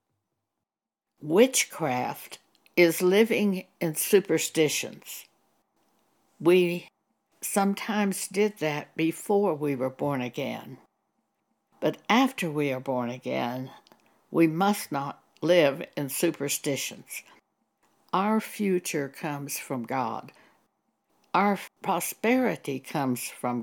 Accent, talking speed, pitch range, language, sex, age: American, 90 wpm, 150-200 Hz, English, female, 60-79